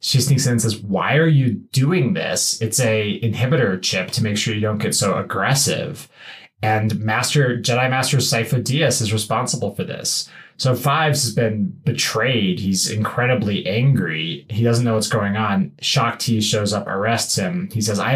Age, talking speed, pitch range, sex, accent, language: 20-39, 180 wpm, 105-135 Hz, male, American, English